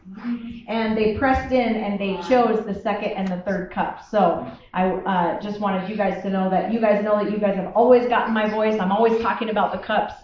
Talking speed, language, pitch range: 235 wpm, English, 210-270 Hz